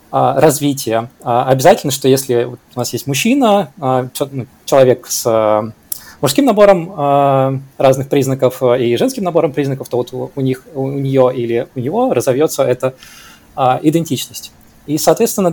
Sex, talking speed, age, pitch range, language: male, 125 wpm, 20-39, 130-170 Hz, Russian